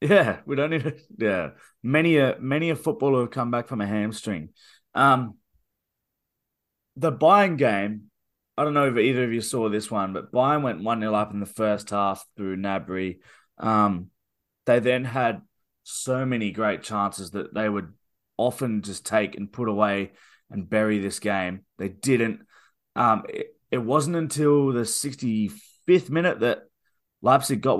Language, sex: English, male